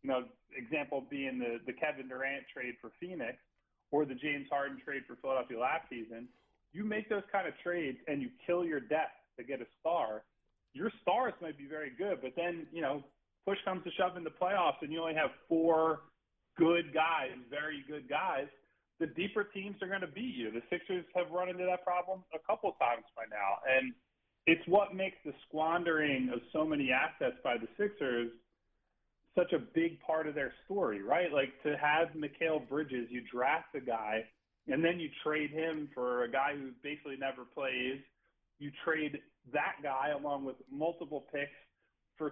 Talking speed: 190 wpm